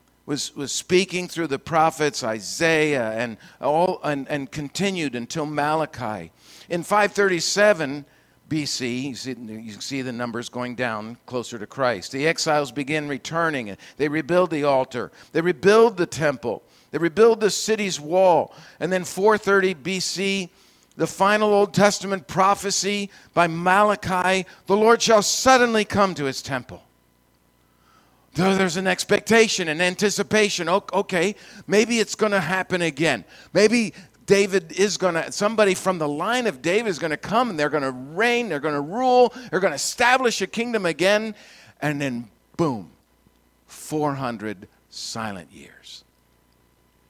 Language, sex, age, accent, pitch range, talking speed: English, male, 50-69, American, 130-195 Hz, 145 wpm